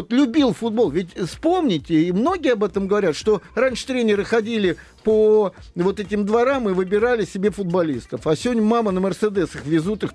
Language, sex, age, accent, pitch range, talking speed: Russian, male, 50-69, native, 190-265 Hz, 165 wpm